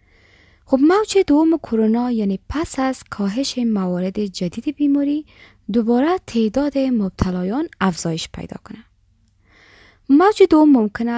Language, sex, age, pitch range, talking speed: Persian, female, 20-39, 190-265 Hz, 105 wpm